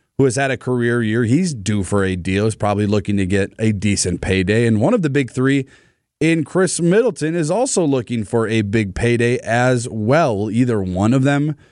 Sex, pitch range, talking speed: male, 115-145 Hz, 210 wpm